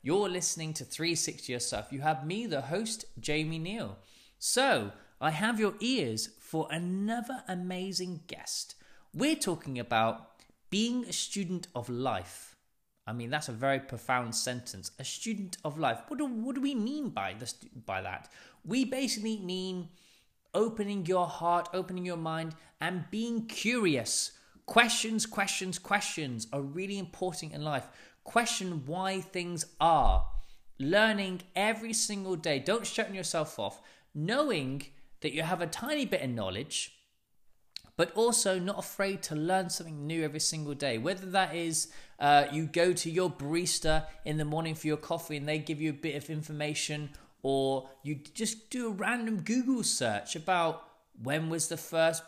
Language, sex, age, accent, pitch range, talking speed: English, male, 20-39, British, 150-200 Hz, 160 wpm